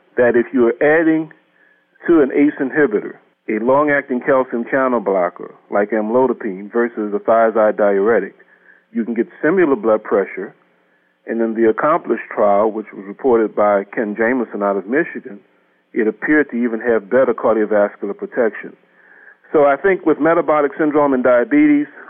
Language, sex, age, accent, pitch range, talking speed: English, male, 40-59, American, 110-140 Hz, 150 wpm